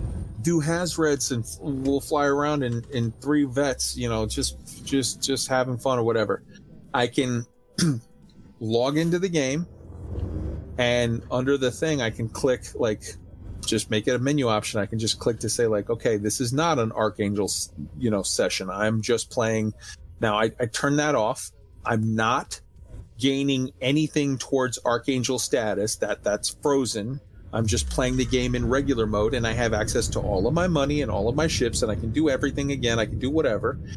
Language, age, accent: English, 30-49, American